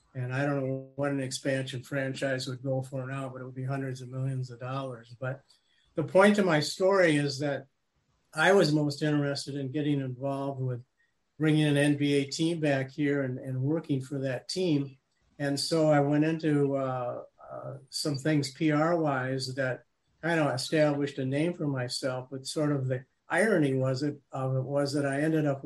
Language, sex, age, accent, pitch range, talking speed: English, male, 50-69, American, 130-150 Hz, 185 wpm